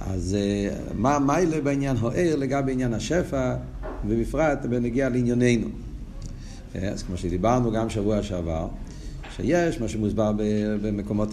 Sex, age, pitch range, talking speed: male, 50-69, 100-135 Hz, 115 wpm